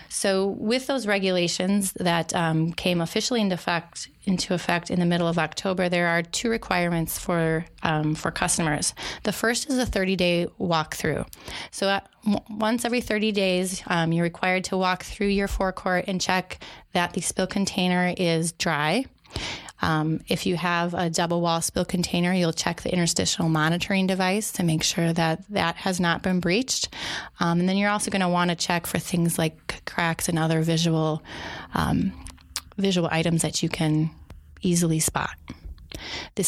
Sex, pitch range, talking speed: female, 165-190 Hz, 165 wpm